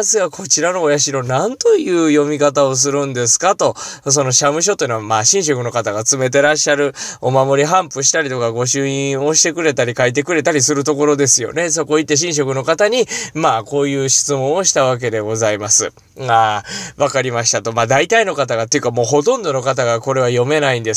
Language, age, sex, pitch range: Japanese, 20-39, male, 120-170 Hz